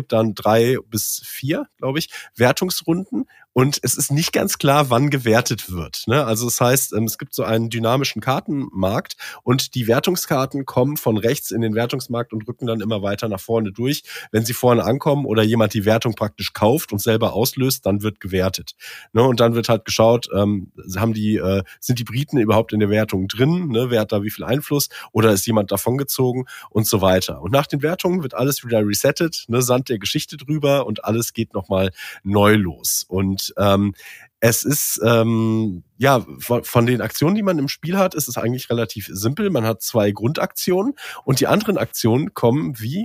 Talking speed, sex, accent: 190 wpm, male, German